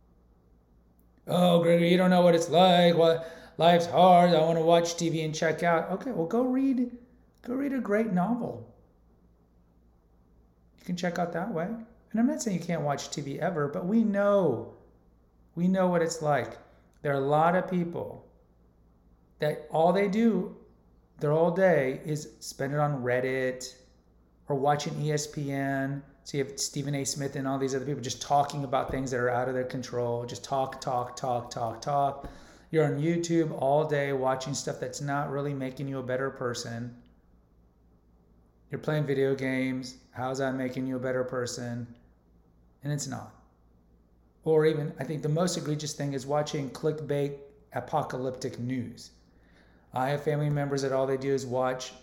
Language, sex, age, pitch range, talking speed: English, male, 30-49, 120-160 Hz, 175 wpm